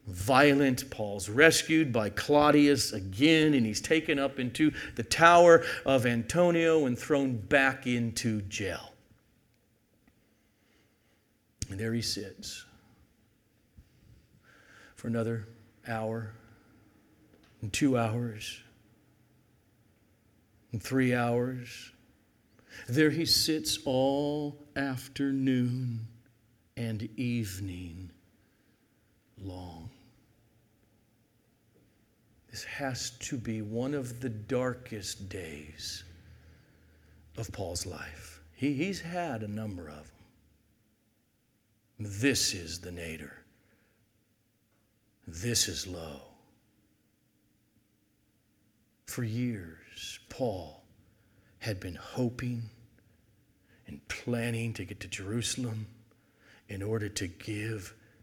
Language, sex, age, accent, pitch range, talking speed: English, male, 50-69, American, 105-125 Hz, 85 wpm